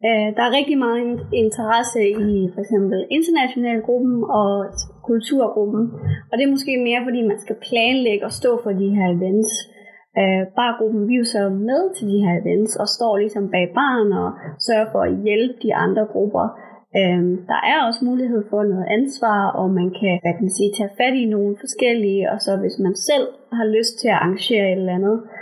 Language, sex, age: Danish, female, 30-49